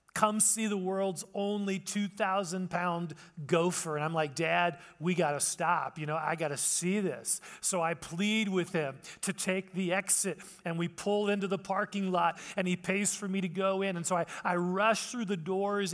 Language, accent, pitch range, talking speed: English, American, 170-205 Hz, 205 wpm